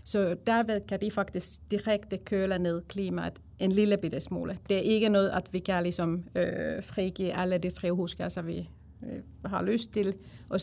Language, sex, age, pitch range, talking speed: Danish, female, 30-49, 175-205 Hz, 175 wpm